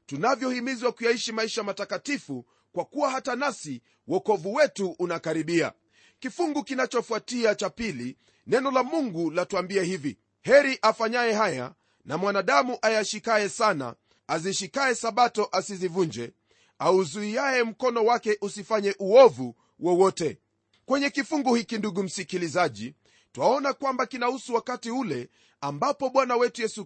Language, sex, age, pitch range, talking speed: Swahili, male, 30-49, 185-250 Hz, 110 wpm